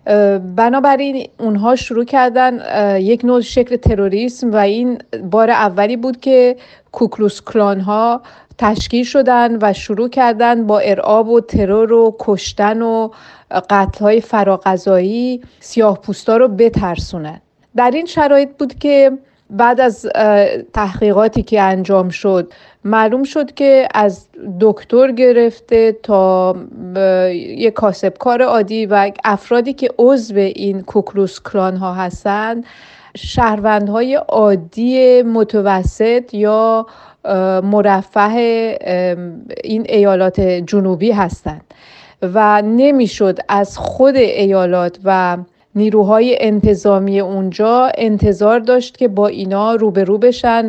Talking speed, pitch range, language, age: 105 wpm, 200-245 Hz, Persian, 30-49